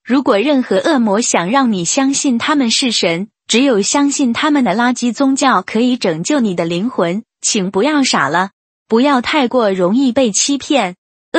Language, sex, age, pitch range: Chinese, female, 20-39, 205-275 Hz